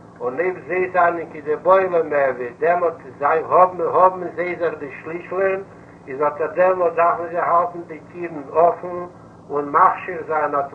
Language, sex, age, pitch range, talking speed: Hebrew, male, 60-79, 145-170 Hz, 165 wpm